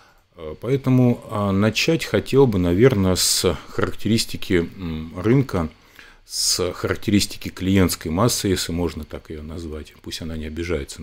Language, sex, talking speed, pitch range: Russian, male, 115 wpm, 80-105 Hz